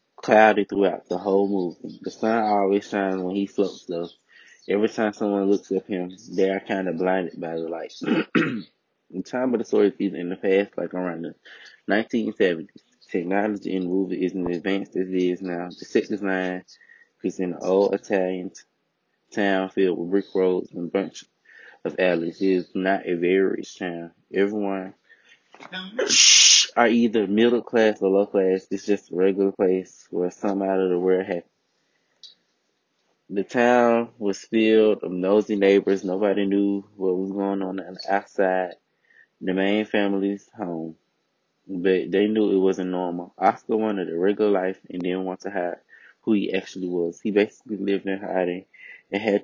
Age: 20-39